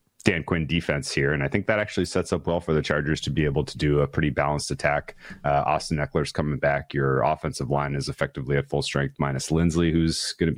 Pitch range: 75-85 Hz